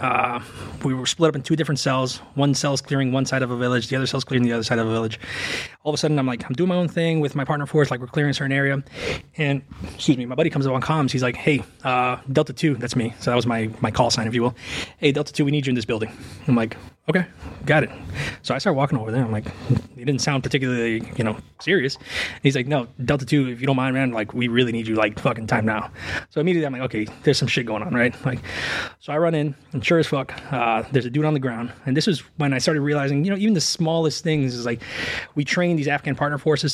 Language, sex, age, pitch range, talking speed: English, male, 20-39, 120-145 Hz, 280 wpm